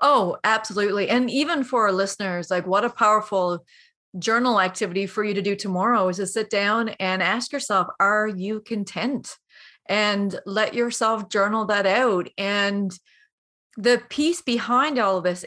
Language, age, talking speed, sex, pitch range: English, 30-49, 160 wpm, female, 210-275 Hz